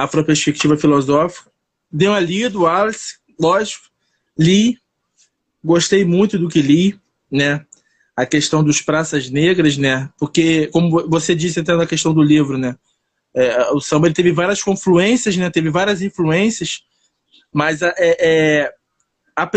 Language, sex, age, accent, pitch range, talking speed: Portuguese, male, 20-39, Brazilian, 160-205 Hz, 140 wpm